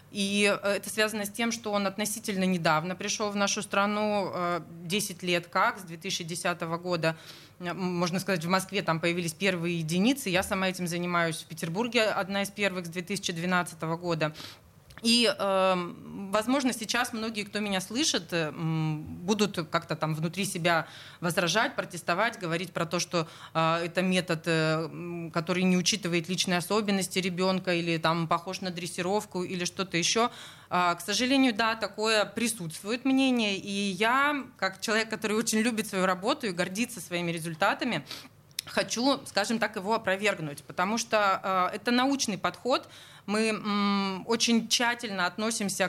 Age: 20-39